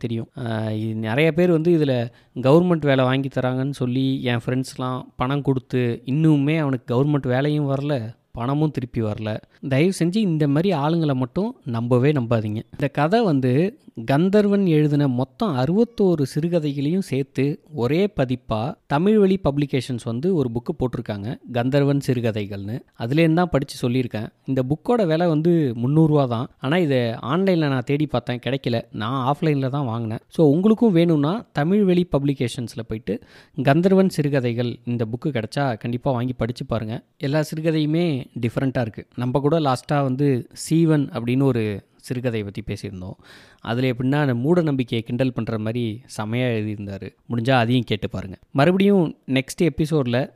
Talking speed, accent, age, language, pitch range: 140 wpm, native, 20-39, Tamil, 120-155 Hz